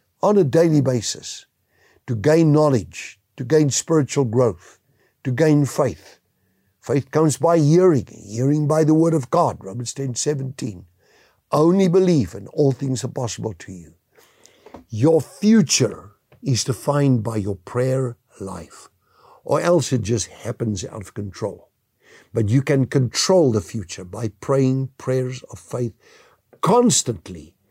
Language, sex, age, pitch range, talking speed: English, male, 60-79, 110-145 Hz, 140 wpm